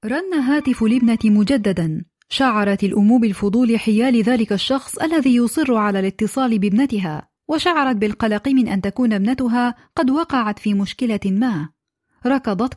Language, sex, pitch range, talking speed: Arabic, female, 210-270 Hz, 125 wpm